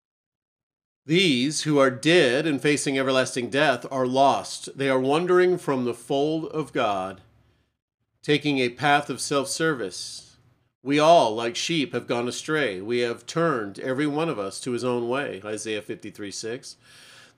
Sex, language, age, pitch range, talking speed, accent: male, English, 40-59, 120-150 Hz, 150 wpm, American